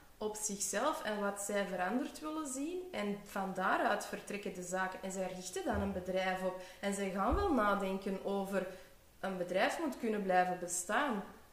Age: 20-39